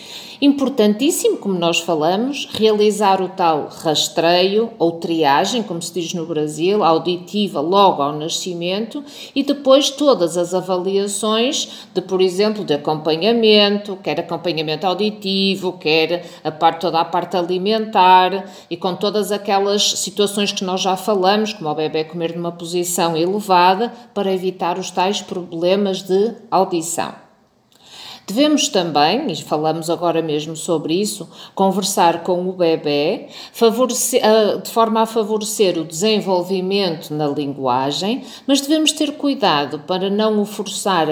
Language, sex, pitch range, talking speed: Portuguese, female, 165-210 Hz, 135 wpm